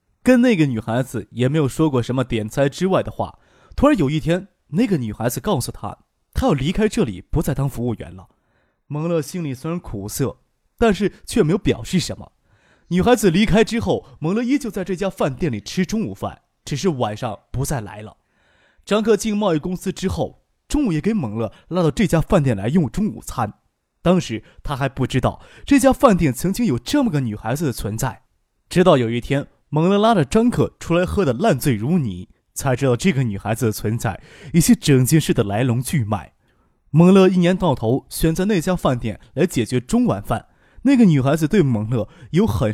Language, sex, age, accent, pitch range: Chinese, male, 20-39, native, 120-185 Hz